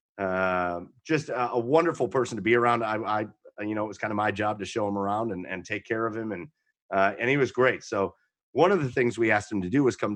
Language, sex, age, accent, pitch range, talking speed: English, male, 30-49, American, 105-145 Hz, 280 wpm